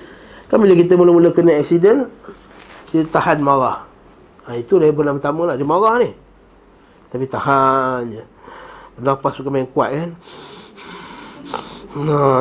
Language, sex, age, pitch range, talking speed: Malay, male, 20-39, 135-195 Hz, 125 wpm